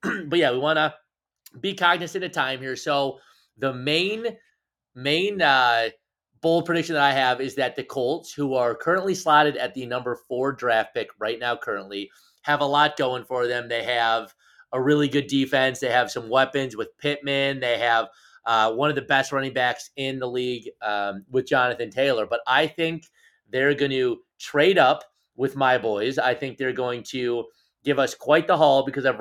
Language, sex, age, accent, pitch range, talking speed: English, male, 30-49, American, 125-145 Hz, 195 wpm